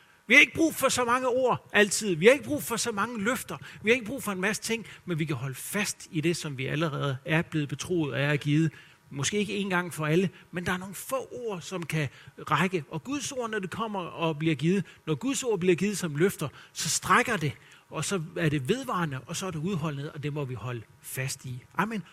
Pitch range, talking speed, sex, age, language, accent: 155-215 Hz, 250 wpm, male, 40-59, Danish, native